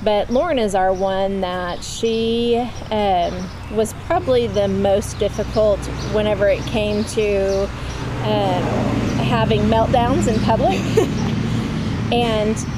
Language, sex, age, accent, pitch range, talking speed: English, female, 30-49, American, 180-210 Hz, 110 wpm